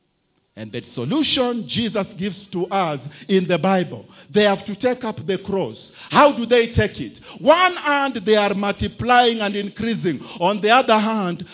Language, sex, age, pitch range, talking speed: English, male, 50-69, 150-225 Hz, 170 wpm